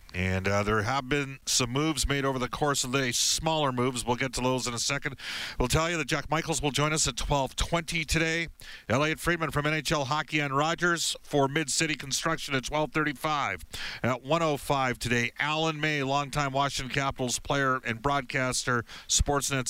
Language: English